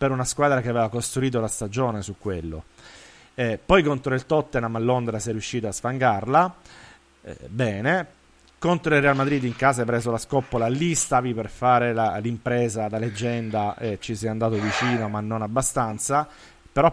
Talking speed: 185 wpm